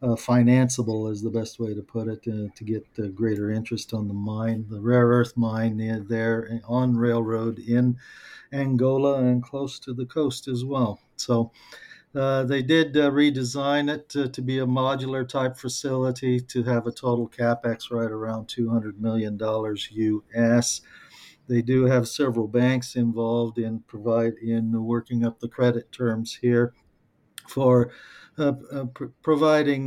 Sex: male